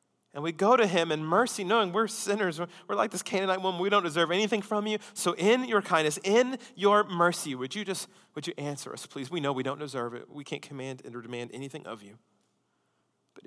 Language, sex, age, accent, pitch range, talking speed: English, male, 30-49, American, 150-205 Hz, 225 wpm